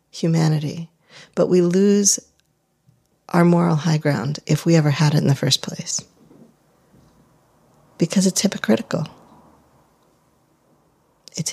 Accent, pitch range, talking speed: American, 155-180 Hz, 110 wpm